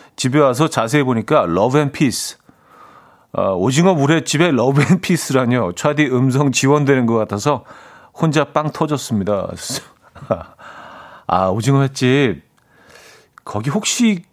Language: Korean